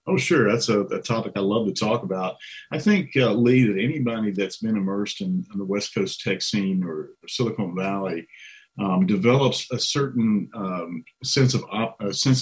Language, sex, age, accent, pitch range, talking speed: English, male, 50-69, American, 95-120 Hz, 200 wpm